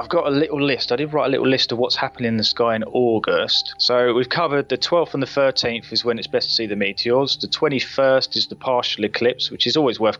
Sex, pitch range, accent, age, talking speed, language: male, 110-140 Hz, British, 20-39, 265 wpm, English